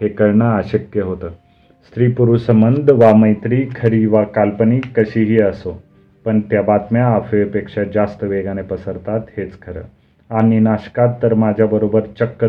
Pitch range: 100-115 Hz